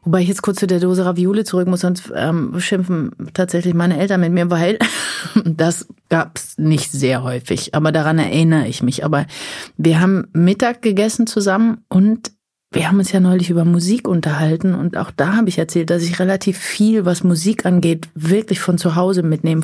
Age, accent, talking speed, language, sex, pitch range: 30-49, German, 195 wpm, German, female, 165-200 Hz